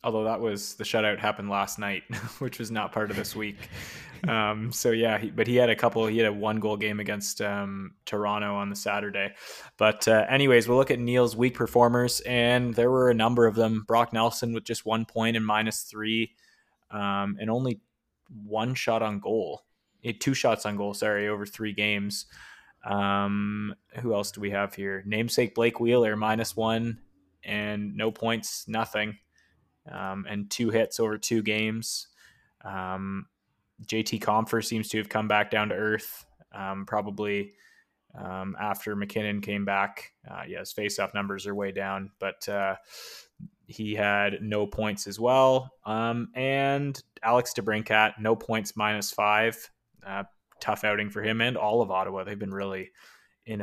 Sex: male